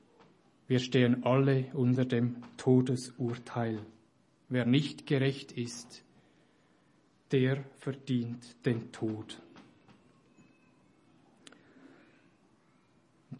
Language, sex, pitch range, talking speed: English, male, 125-155 Hz, 65 wpm